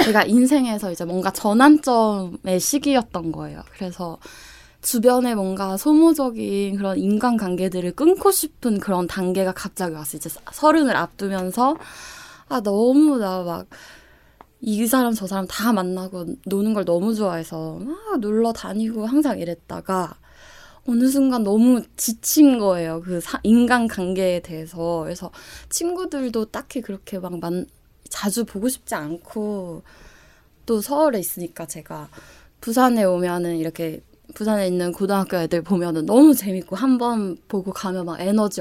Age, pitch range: 20-39, 180-240 Hz